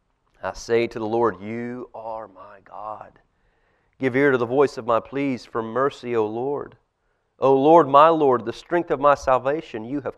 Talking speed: 190 wpm